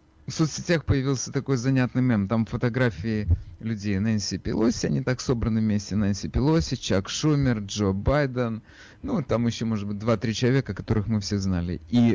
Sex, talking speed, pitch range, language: male, 165 wpm, 100-140 Hz, Russian